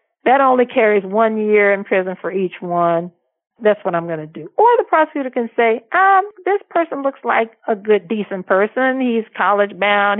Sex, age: female, 50-69